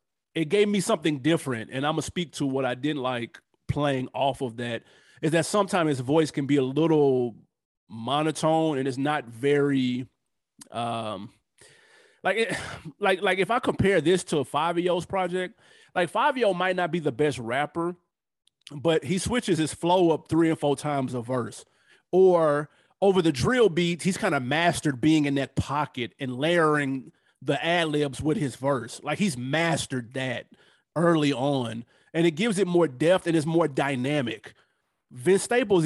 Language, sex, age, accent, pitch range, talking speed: English, male, 30-49, American, 140-180 Hz, 170 wpm